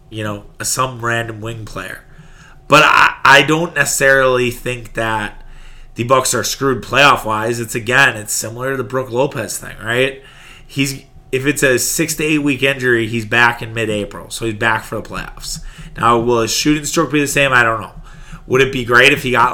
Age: 30-49